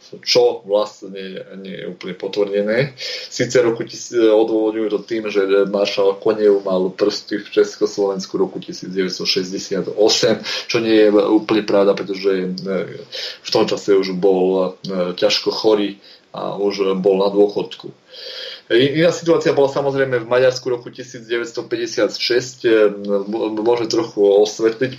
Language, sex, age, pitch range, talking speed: Slovak, male, 20-39, 100-120 Hz, 120 wpm